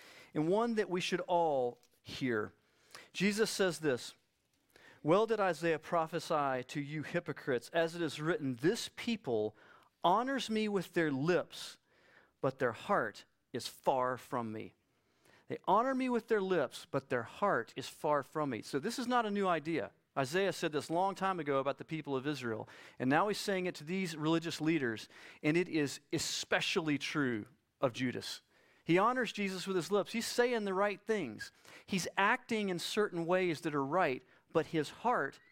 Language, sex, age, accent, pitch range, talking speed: English, male, 40-59, American, 150-200 Hz, 175 wpm